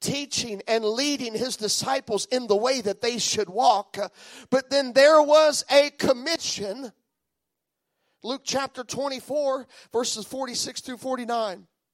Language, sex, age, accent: English, male, 40-59, American